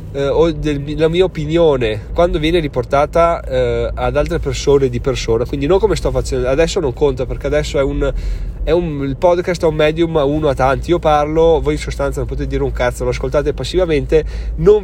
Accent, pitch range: native, 130-165 Hz